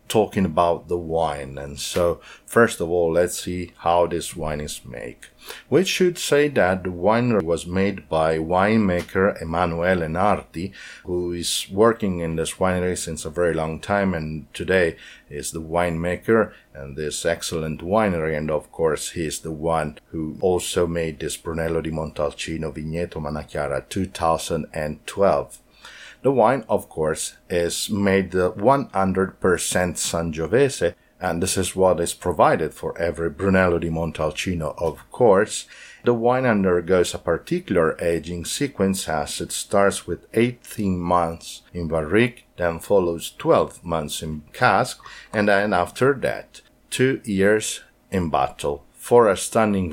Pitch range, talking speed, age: 80-100 Hz, 140 wpm, 50-69